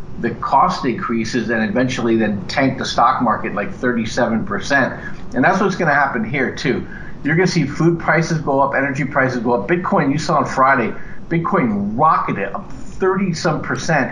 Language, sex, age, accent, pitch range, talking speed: English, male, 50-69, American, 120-145 Hz, 185 wpm